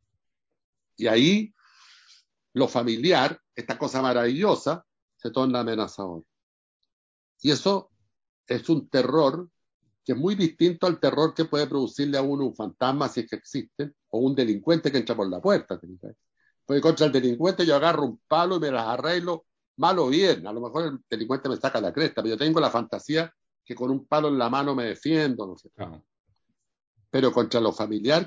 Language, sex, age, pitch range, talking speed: Spanish, male, 60-79, 115-160 Hz, 180 wpm